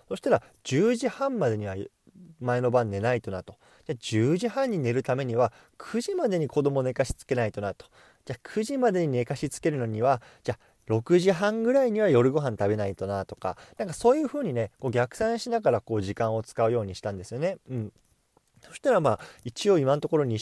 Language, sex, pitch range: Japanese, male, 105-175 Hz